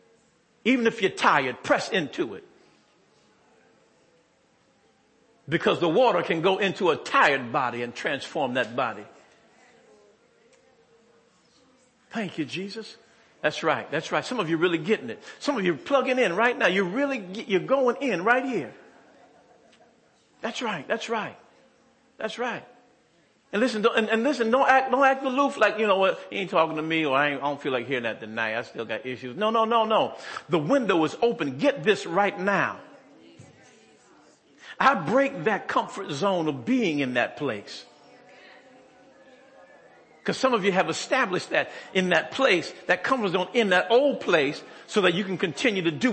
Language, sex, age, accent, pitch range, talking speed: English, male, 50-69, American, 180-265 Hz, 175 wpm